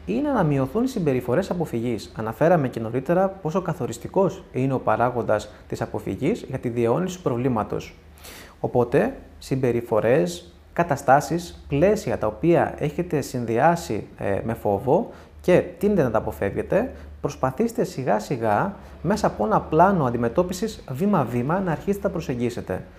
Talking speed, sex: 130 wpm, male